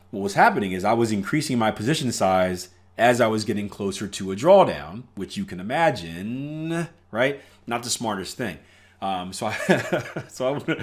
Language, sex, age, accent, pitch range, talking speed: English, male, 30-49, American, 95-125 Hz, 170 wpm